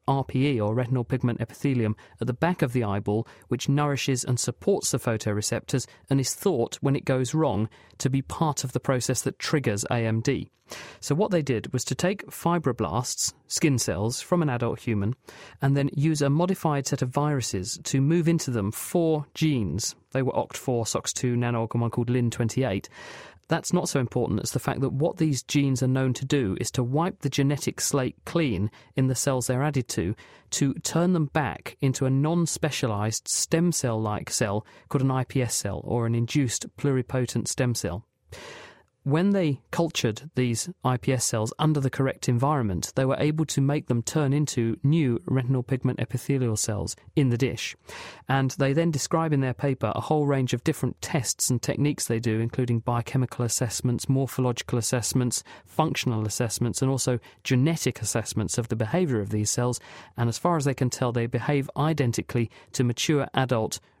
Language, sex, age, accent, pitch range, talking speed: English, male, 40-59, British, 120-145 Hz, 180 wpm